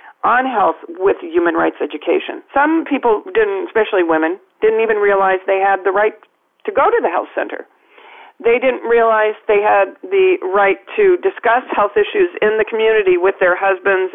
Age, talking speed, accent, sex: 40-59, 175 wpm, American, female